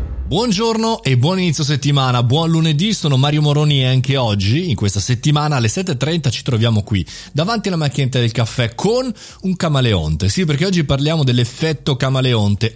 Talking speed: 165 wpm